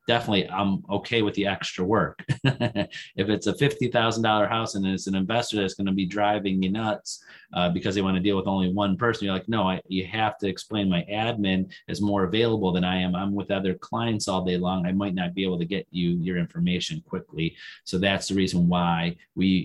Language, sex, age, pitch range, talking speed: English, male, 30-49, 90-105 Hz, 220 wpm